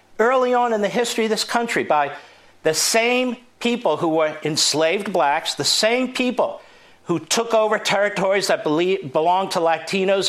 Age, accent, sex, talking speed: 50-69, American, male, 155 wpm